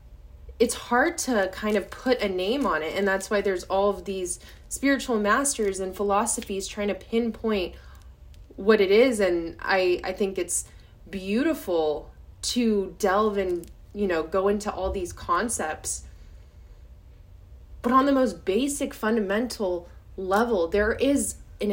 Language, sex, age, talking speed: English, female, 20-39, 145 wpm